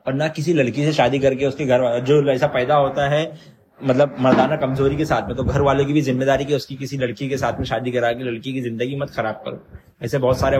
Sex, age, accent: male, 20-39, native